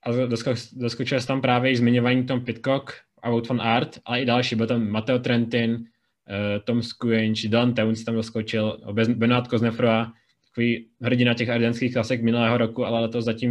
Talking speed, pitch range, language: 165 wpm, 115-125 Hz, Czech